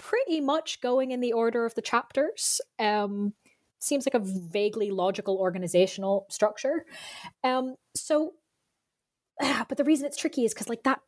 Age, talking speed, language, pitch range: 20-39, 155 wpm, English, 175-270 Hz